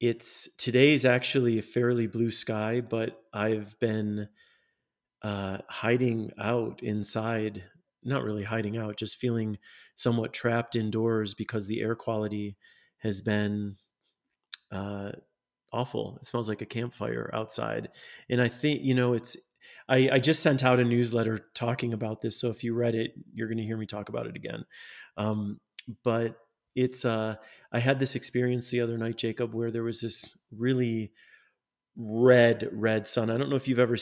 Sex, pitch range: male, 110-125 Hz